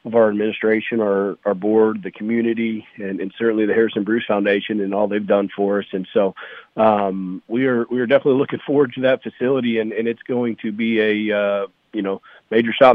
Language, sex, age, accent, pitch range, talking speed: English, male, 40-59, American, 100-110 Hz, 215 wpm